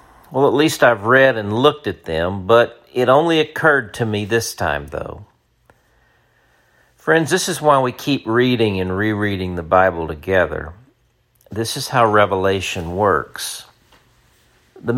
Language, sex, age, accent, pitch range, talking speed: English, male, 50-69, American, 95-120 Hz, 145 wpm